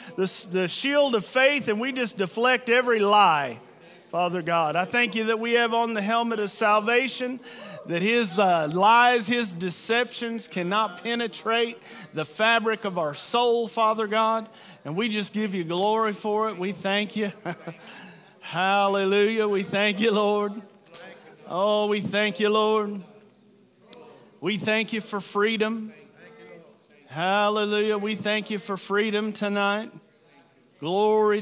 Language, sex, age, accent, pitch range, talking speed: English, male, 40-59, American, 160-215 Hz, 140 wpm